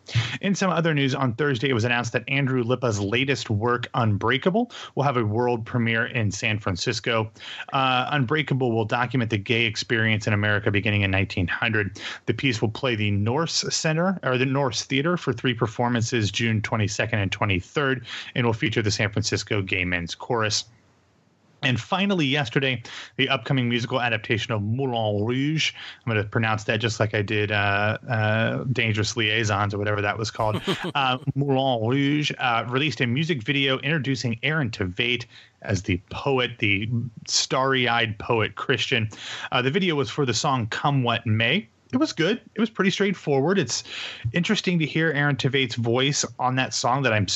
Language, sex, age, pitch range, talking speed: English, male, 30-49, 110-140 Hz, 175 wpm